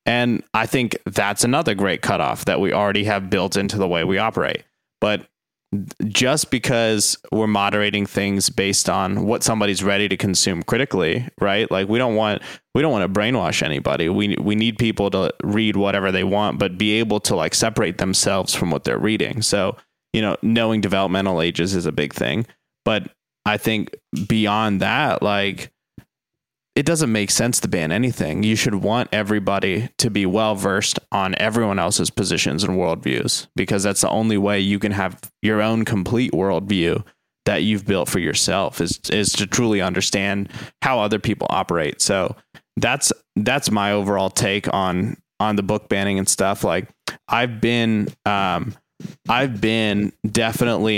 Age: 20-39